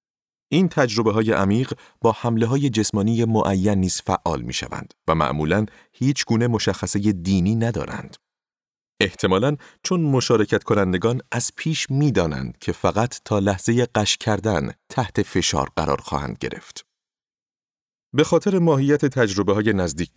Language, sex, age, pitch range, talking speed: Persian, male, 30-49, 90-120 Hz, 130 wpm